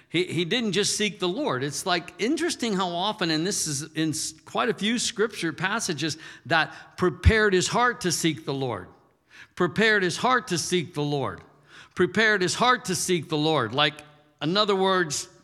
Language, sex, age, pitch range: English, male, 50-69, 130-180 Hz